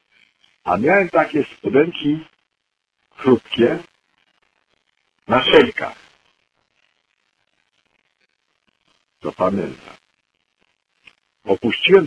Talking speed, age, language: 50 wpm, 50-69, Polish